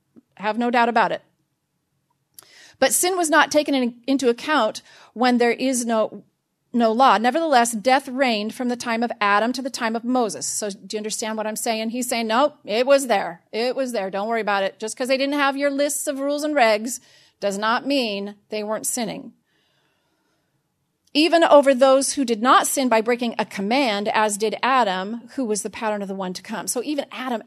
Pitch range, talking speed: 215-280 Hz, 210 wpm